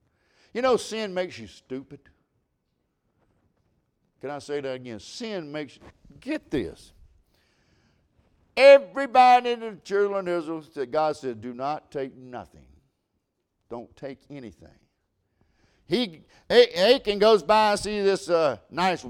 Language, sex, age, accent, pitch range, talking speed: English, male, 60-79, American, 150-230 Hz, 125 wpm